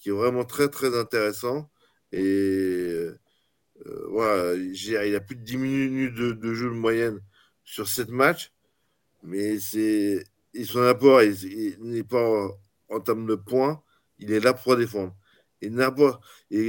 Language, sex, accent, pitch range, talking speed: French, male, French, 100-125 Hz, 150 wpm